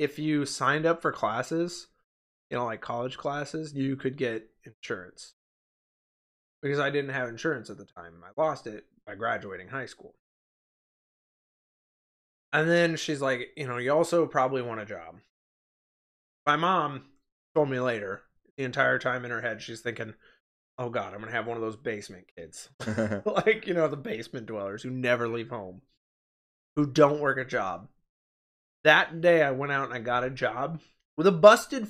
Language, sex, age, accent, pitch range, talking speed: English, male, 20-39, American, 120-170 Hz, 175 wpm